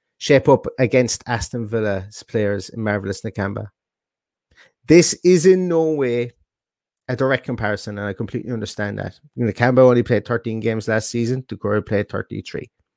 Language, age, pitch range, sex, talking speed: English, 30-49, 110-135 Hz, male, 150 wpm